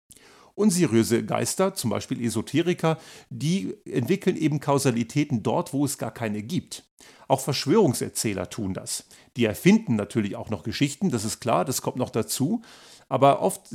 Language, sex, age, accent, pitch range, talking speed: German, male, 50-69, German, 110-150 Hz, 150 wpm